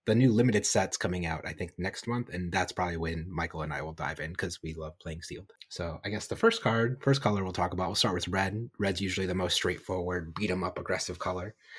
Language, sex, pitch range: English, male, 85-100 Hz